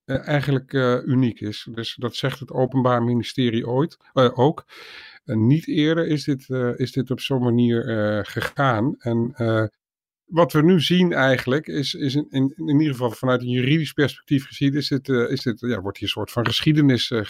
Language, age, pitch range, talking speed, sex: Dutch, 50-69, 115-135 Hz, 205 wpm, male